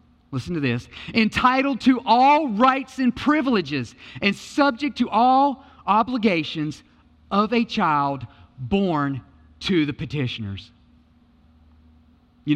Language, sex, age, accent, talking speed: English, male, 40-59, American, 105 wpm